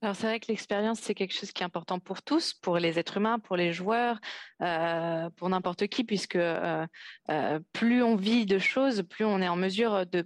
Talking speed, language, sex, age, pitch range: 220 wpm, French, female, 20-39, 175-210 Hz